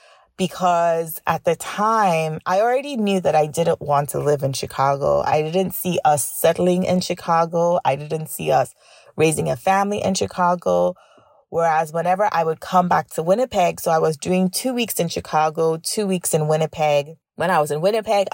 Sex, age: female, 30-49